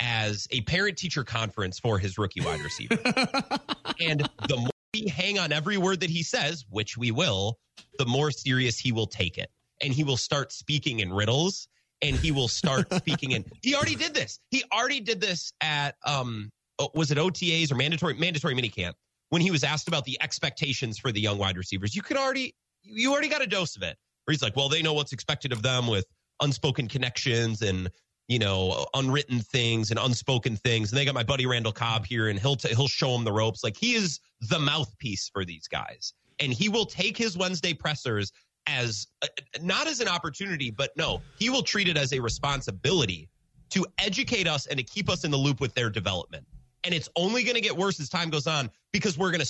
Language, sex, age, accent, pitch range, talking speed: English, male, 30-49, American, 115-175 Hz, 215 wpm